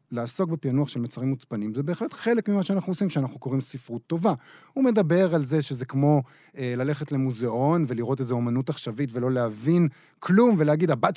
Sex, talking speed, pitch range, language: male, 175 wpm, 125-175 Hz, Hebrew